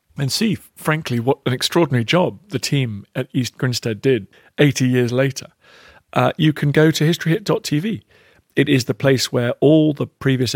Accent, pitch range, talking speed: British, 110-140 Hz, 170 wpm